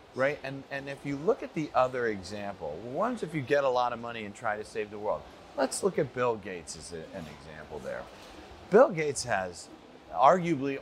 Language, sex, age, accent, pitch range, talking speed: Romanian, male, 40-59, American, 125-190 Hz, 210 wpm